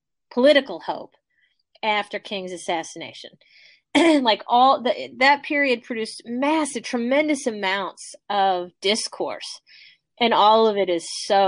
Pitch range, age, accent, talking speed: 185-225 Hz, 30-49, American, 110 wpm